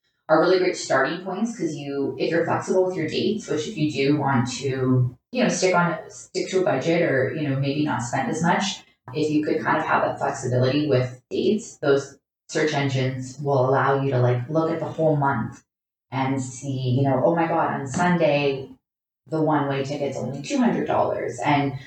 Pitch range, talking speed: 135-165 Hz, 200 wpm